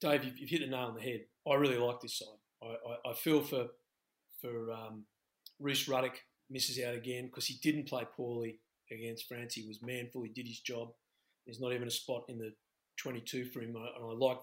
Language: English